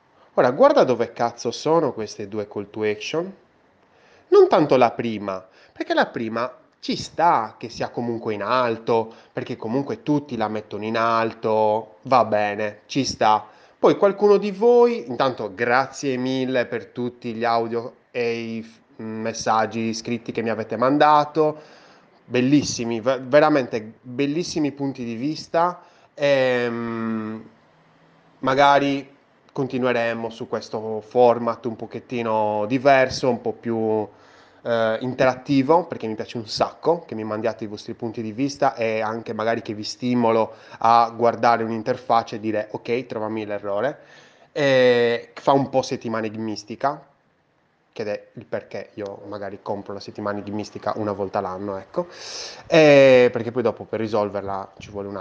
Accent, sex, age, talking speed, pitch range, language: native, male, 20-39, 145 wpm, 110-135 Hz, Italian